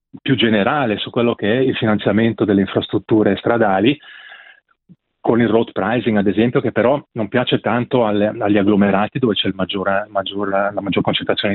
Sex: male